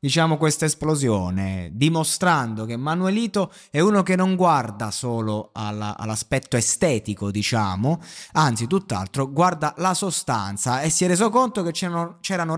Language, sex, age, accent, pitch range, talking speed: Italian, male, 20-39, native, 115-185 Hz, 140 wpm